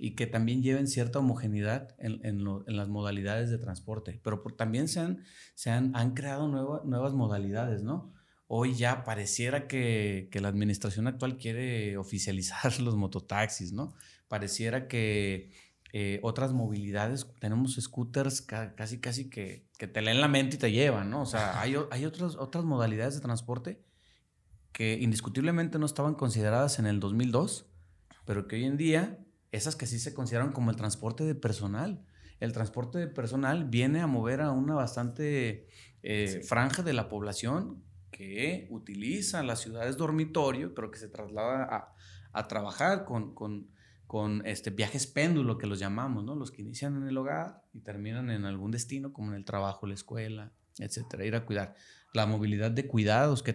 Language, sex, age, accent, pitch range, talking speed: Spanish, male, 30-49, Mexican, 105-135 Hz, 170 wpm